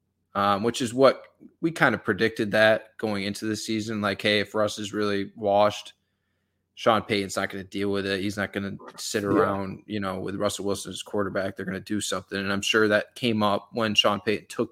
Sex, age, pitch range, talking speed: male, 20-39, 95-110 Hz, 225 wpm